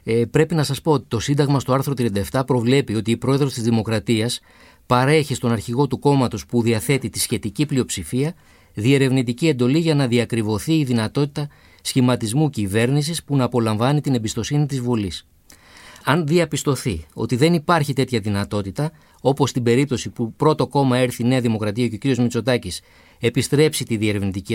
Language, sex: Greek, male